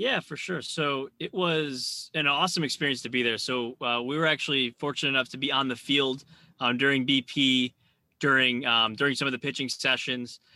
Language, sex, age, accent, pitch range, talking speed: English, male, 20-39, American, 120-150 Hz, 200 wpm